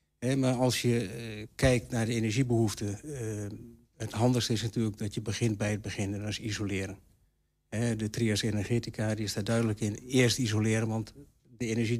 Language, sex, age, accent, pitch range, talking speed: Dutch, male, 60-79, Dutch, 110-130 Hz, 170 wpm